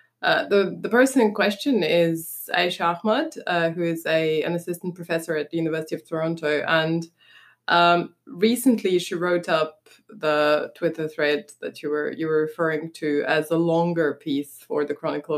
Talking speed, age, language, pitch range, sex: 170 wpm, 20-39, English, 150-190 Hz, female